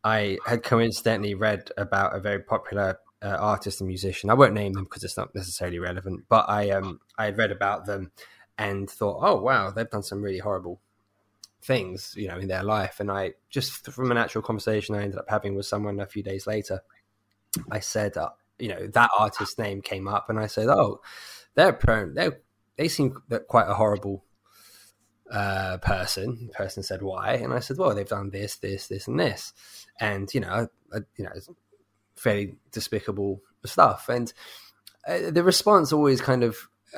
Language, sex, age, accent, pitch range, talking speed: English, male, 10-29, British, 100-125 Hz, 190 wpm